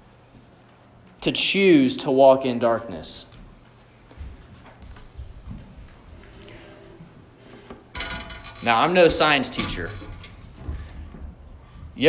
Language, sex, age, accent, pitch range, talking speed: English, male, 20-39, American, 130-200 Hz, 60 wpm